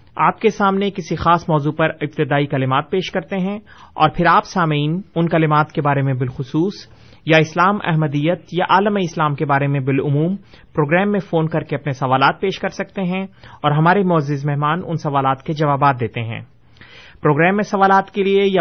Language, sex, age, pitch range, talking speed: Urdu, male, 30-49, 145-180 Hz, 190 wpm